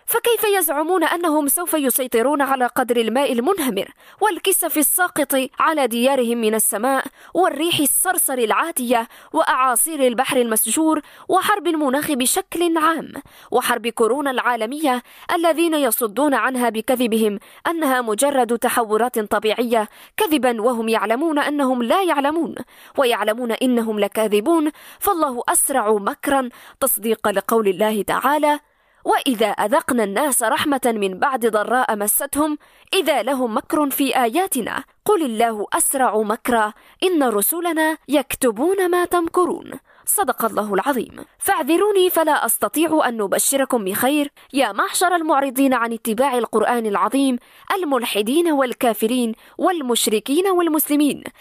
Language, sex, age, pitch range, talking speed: Arabic, female, 20-39, 235-315 Hz, 110 wpm